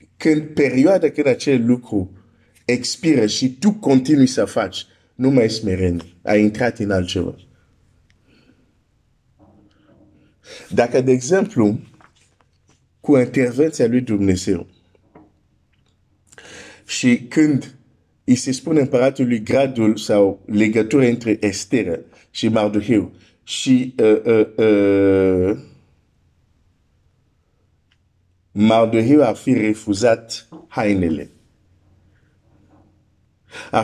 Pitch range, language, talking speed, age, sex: 95-125 Hz, Romanian, 80 wpm, 50-69, male